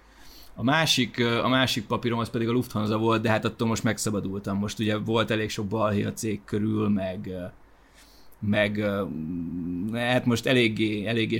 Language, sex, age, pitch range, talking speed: Hungarian, male, 20-39, 105-120 Hz, 155 wpm